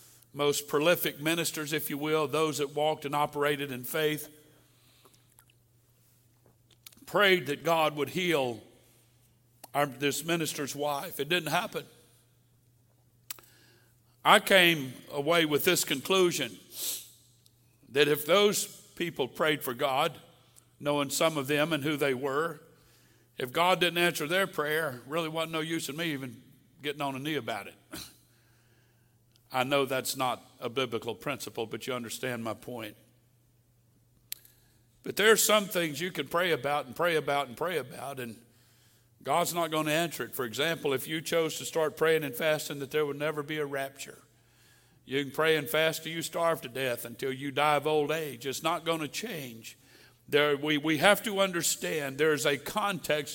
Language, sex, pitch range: English, male, 120-160 Hz